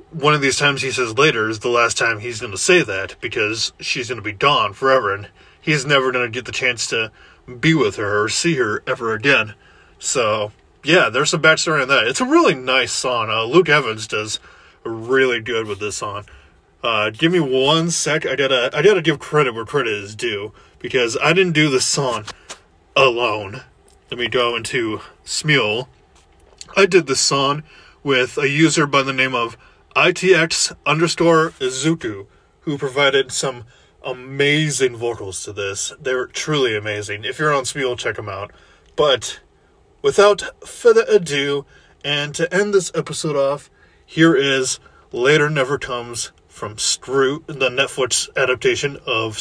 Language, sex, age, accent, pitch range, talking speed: English, male, 20-39, American, 110-155 Hz, 170 wpm